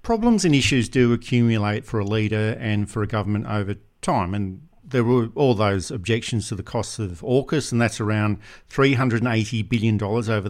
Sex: male